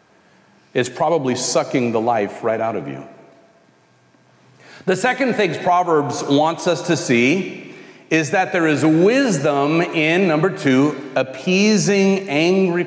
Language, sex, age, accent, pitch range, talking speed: English, male, 40-59, American, 135-185 Hz, 125 wpm